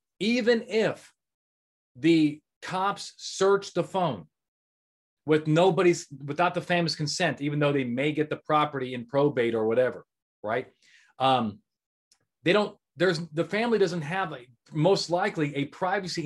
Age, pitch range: 30-49, 145-195 Hz